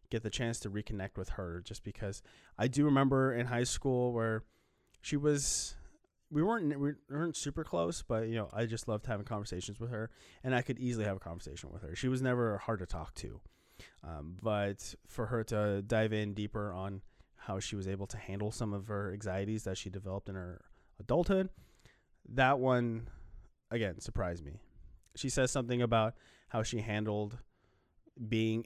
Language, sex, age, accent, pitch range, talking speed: English, male, 30-49, American, 95-120 Hz, 185 wpm